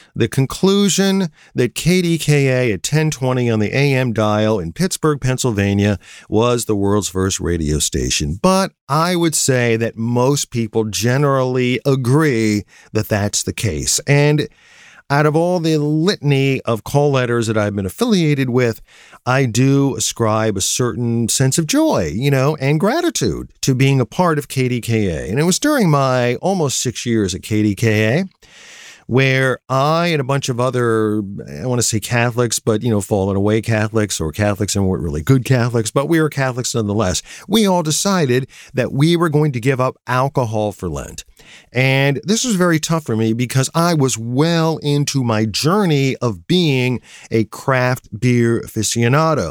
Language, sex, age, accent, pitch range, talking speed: English, male, 50-69, American, 110-150 Hz, 165 wpm